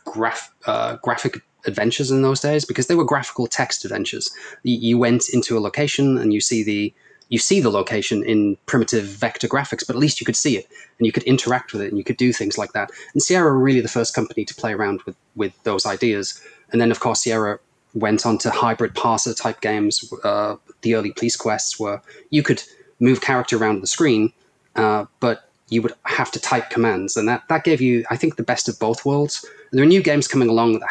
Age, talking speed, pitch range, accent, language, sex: 20-39, 225 wpm, 110-130 Hz, British, English, male